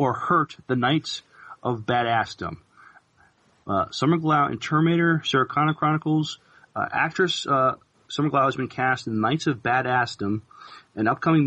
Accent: American